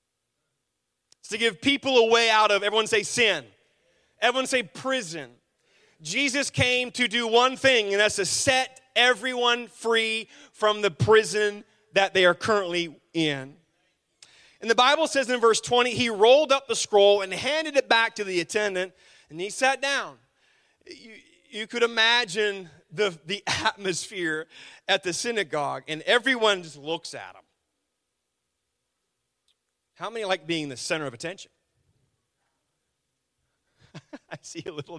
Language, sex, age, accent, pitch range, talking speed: English, male, 30-49, American, 175-275 Hz, 145 wpm